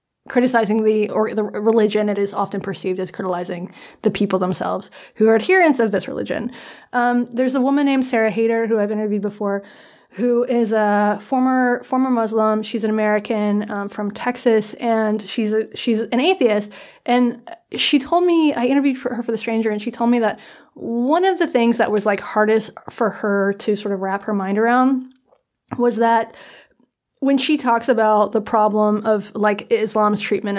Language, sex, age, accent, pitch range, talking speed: English, female, 20-39, American, 200-240 Hz, 185 wpm